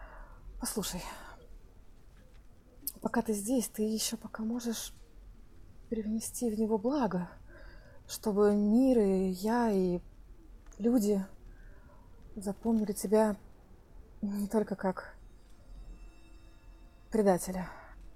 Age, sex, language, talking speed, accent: 30-49, female, Russian, 80 wpm, native